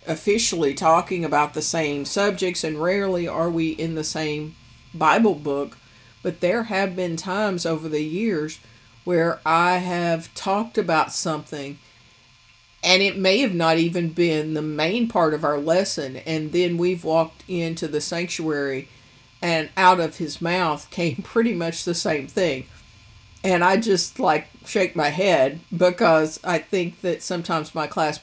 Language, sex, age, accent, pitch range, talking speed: English, female, 50-69, American, 150-180 Hz, 155 wpm